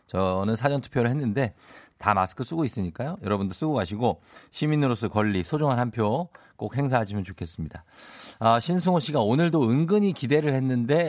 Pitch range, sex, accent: 105-150 Hz, male, native